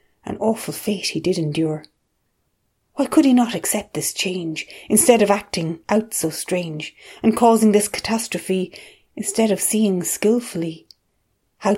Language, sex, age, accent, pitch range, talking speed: English, female, 30-49, Irish, 170-215 Hz, 145 wpm